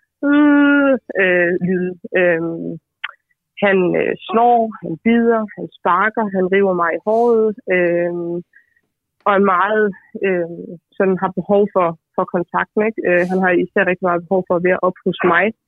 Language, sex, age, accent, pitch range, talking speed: Danish, female, 20-39, native, 175-200 Hz, 160 wpm